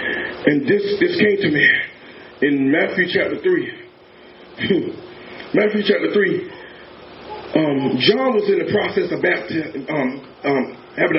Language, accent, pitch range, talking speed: English, American, 230-320 Hz, 120 wpm